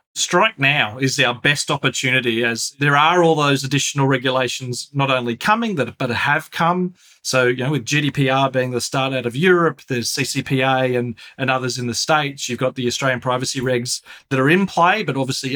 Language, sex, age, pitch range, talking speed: English, male, 40-59, 130-160 Hz, 195 wpm